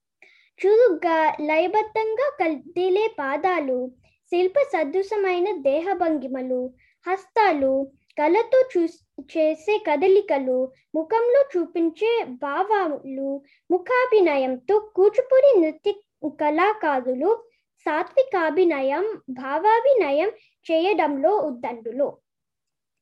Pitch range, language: 290-415 Hz, Telugu